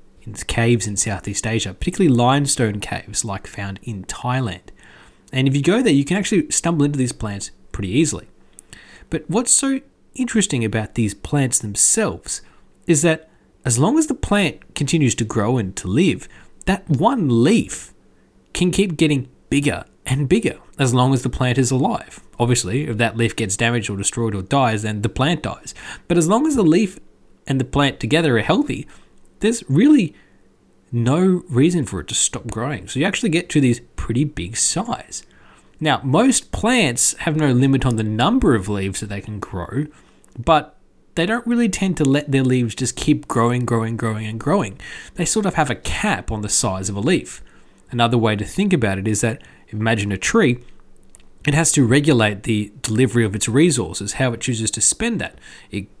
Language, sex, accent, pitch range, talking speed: English, male, Australian, 110-150 Hz, 190 wpm